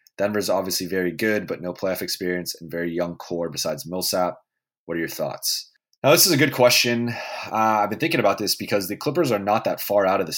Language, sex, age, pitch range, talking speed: English, male, 20-39, 85-105 Hz, 230 wpm